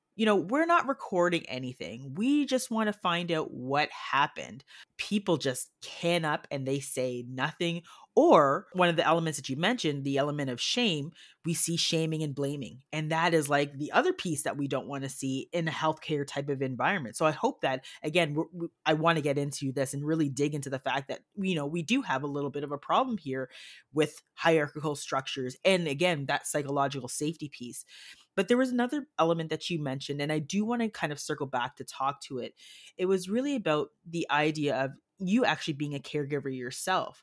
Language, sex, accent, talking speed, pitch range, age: English, female, American, 210 wpm, 140-175 Hz, 30-49